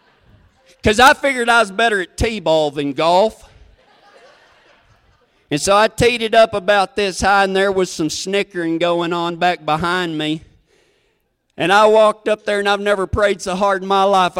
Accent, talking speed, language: American, 180 wpm, English